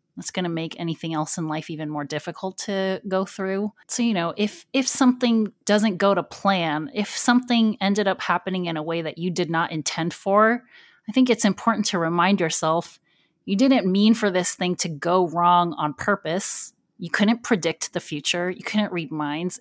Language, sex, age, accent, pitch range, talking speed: English, female, 30-49, American, 165-215 Hz, 200 wpm